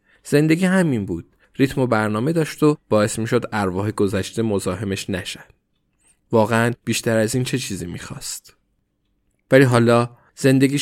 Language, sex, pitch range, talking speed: Persian, male, 100-125 Hz, 135 wpm